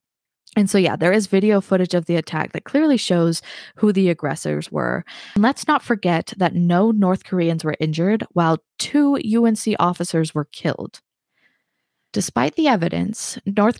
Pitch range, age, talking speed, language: 165-200 Hz, 20-39, 160 wpm, English